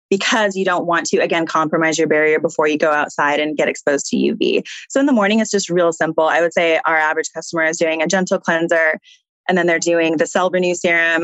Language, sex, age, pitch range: English, female, 20-39, 160-205 Hz